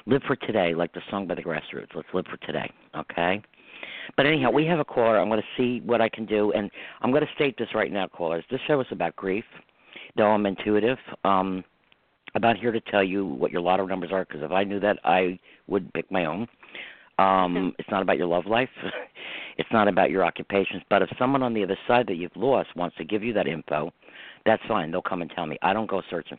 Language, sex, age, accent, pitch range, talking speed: English, male, 50-69, American, 95-120 Hz, 240 wpm